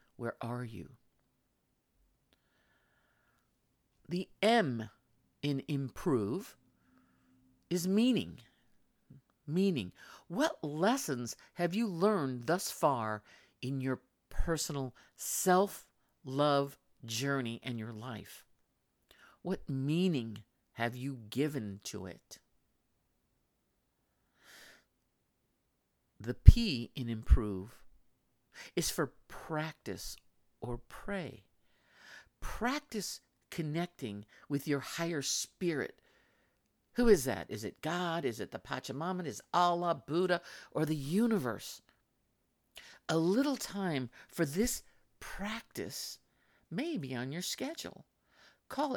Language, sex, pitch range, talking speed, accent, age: English, male, 120-175 Hz, 95 wpm, American, 50-69